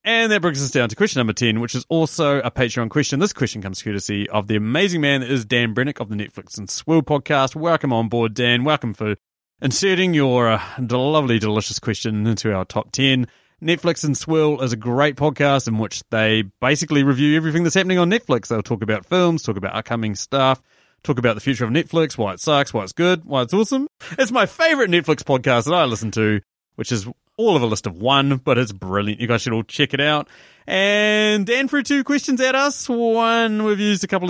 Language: English